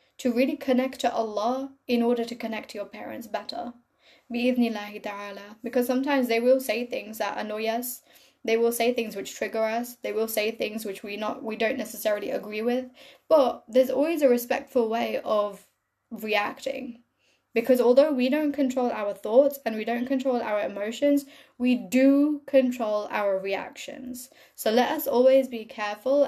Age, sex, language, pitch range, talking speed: 10-29, female, English, 210-255 Hz, 165 wpm